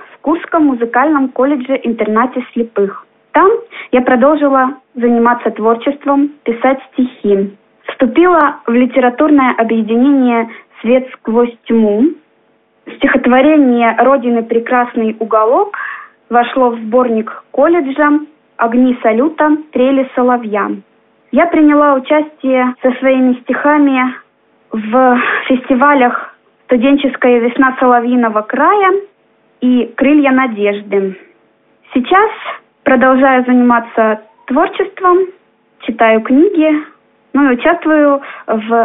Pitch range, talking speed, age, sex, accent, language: 230-295 Hz, 85 wpm, 20-39, female, native, Russian